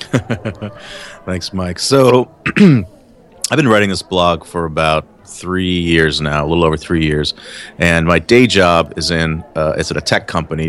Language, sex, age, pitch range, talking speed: English, male, 30-49, 85-100 Hz, 170 wpm